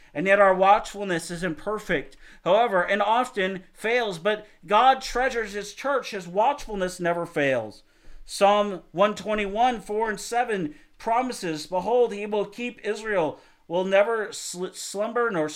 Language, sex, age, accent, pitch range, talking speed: English, male, 50-69, American, 175-215 Hz, 130 wpm